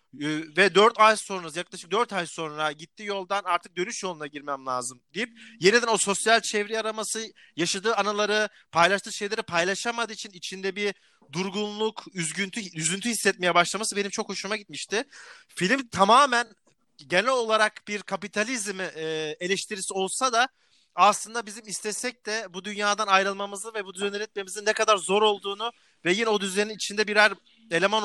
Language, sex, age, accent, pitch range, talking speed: Turkish, male, 40-59, native, 165-215 Hz, 150 wpm